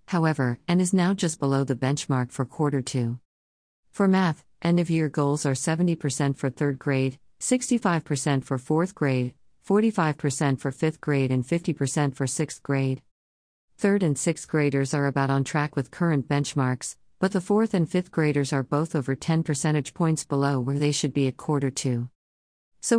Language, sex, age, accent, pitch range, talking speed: English, female, 50-69, American, 135-165 Hz, 170 wpm